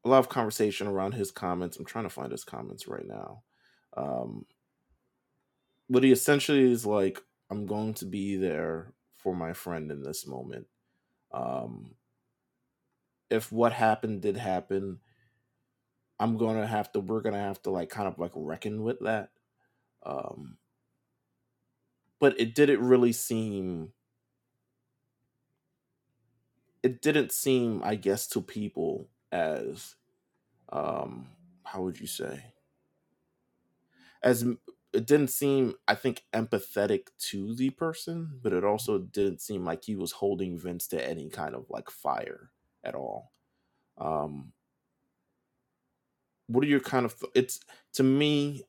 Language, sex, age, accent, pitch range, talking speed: English, male, 20-39, American, 100-130 Hz, 140 wpm